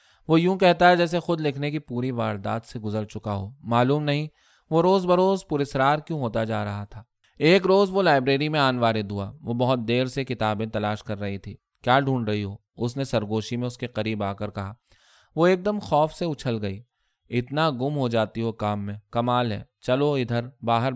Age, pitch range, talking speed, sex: 20-39, 105-140 Hz, 200 wpm, male